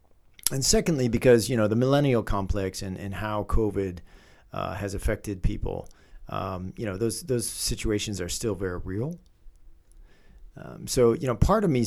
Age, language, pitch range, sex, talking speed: 40-59, English, 100-120 Hz, male, 165 wpm